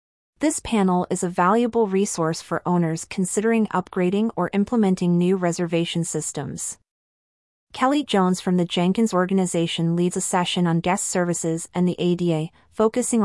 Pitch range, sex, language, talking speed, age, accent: 170-200 Hz, female, English, 140 wpm, 30-49, American